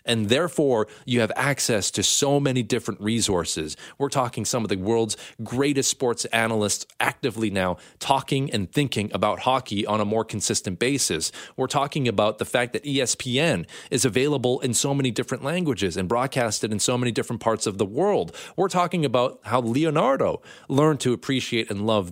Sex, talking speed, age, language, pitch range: male, 175 wpm, 30-49, English, 110-145 Hz